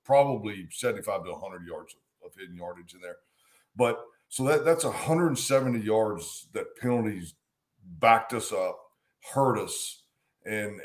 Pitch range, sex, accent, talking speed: 105-130 Hz, male, American, 140 wpm